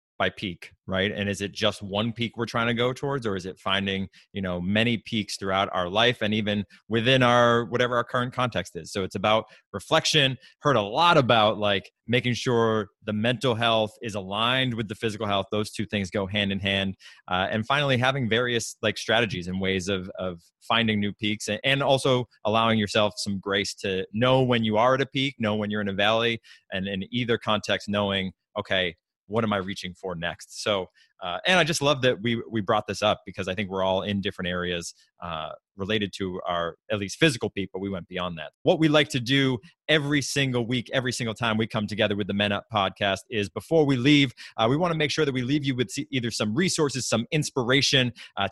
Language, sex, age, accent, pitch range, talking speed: English, male, 20-39, American, 100-125 Hz, 220 wpm